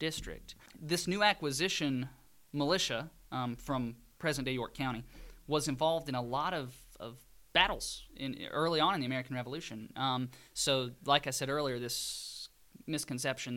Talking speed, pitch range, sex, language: 145 wpm, 120-145 Hz, male, English